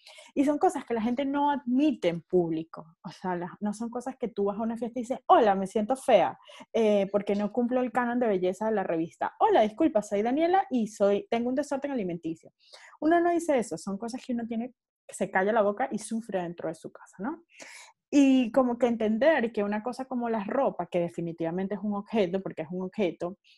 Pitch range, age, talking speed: 190-265 Hz, 20-39, 225 wpm